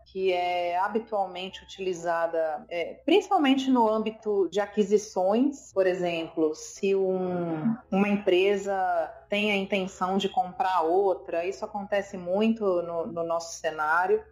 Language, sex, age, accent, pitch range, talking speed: Portuguese, female, 30-49, Brazilian, 180-220 Hz, 115 wpm